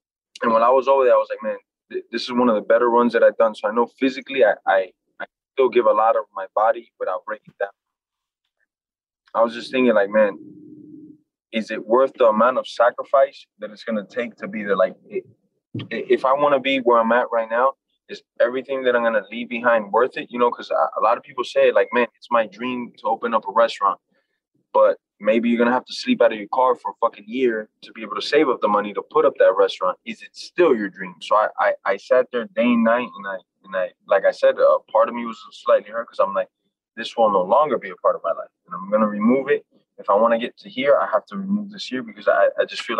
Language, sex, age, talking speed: English, male, 20-39, 270 wpm